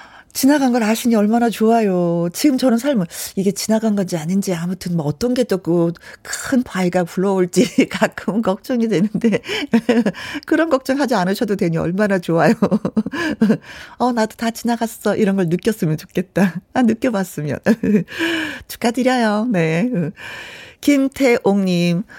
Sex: female